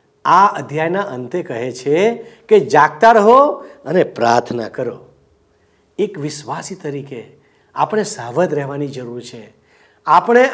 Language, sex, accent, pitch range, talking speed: Gujarati, male, native, 150-235 Hz, 100 wpm